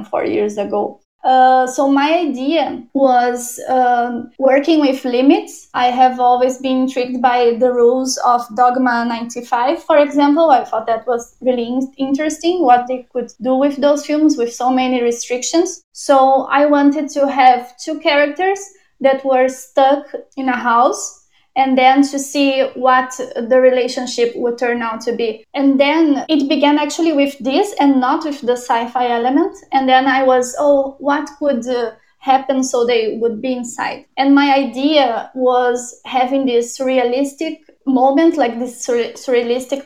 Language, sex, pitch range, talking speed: English, female, 245-280 Hz, 155 wpm